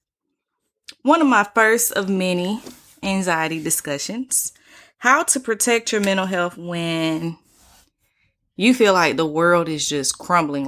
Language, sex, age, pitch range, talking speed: English, female, 20-39, 160-200 Hz, 130 wpm